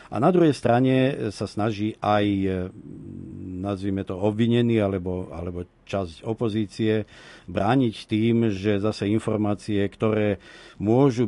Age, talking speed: 50-69, 110 wpm